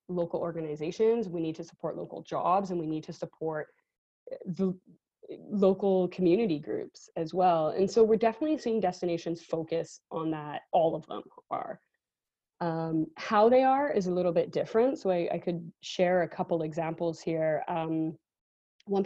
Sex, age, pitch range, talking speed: female, 20-39, 165-205 Hz, 165 wpm